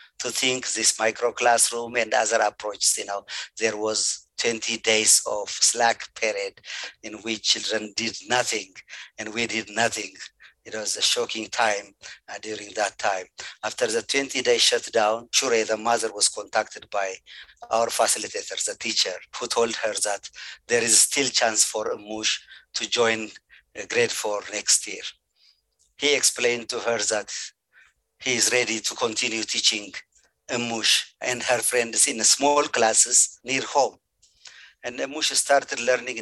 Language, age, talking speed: English, 50-69, 150 wpm